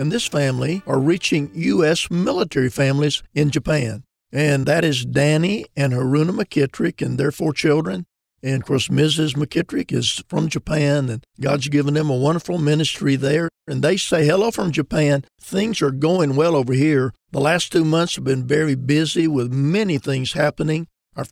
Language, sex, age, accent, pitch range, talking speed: English, male, 50-69, American, 135-170 Hz, 175 wpm